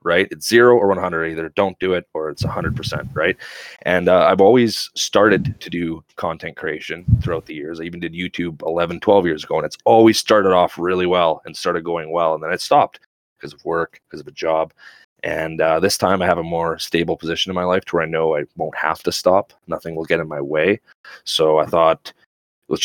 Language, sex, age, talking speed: English, male, 30-49, 235 wpm